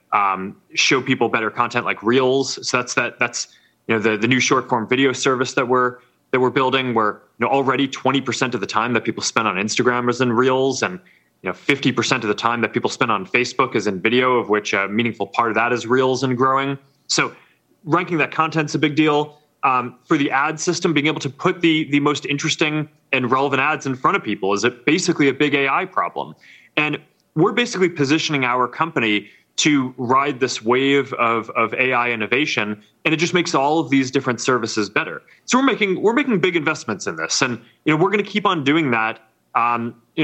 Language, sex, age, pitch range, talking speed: English, male, 30-49, 120-155 Hz, 220 wpm